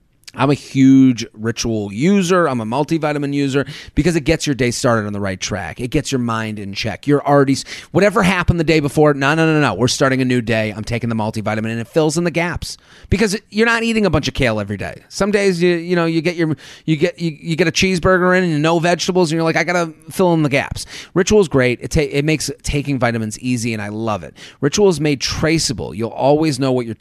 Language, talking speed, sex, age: English, 255 wpm, male, 30-49